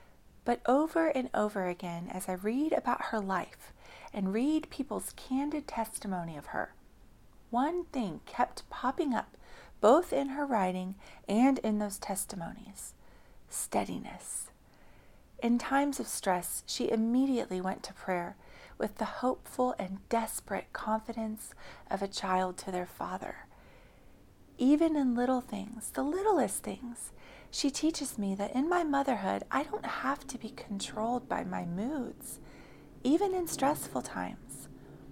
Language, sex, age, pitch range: English, female, 40-59, 195-270 Hz